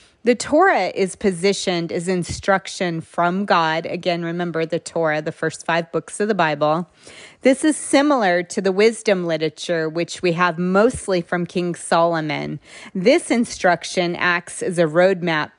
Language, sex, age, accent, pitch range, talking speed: English, female, 30-49, American, 165-195 Hz, 150 wpm